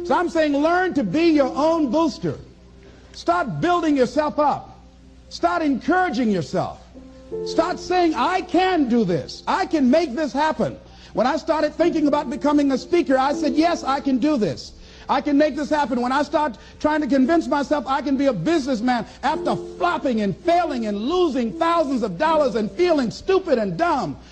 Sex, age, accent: male, 50-69, American